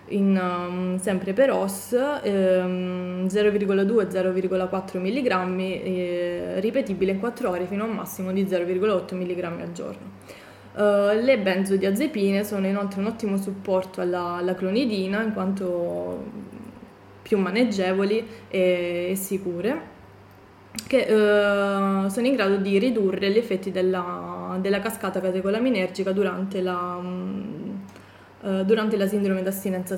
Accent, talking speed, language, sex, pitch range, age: native, 105 wpm, Italian, female, 185-205 Hz, 20-39